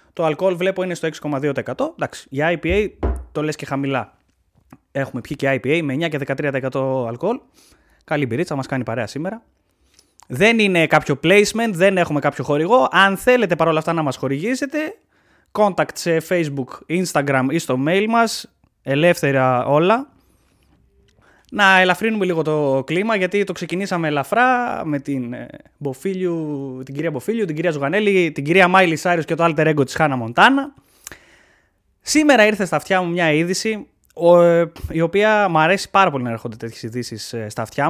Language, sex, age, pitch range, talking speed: Greek, male, 20-39, 140-200 Hz, 160 wpm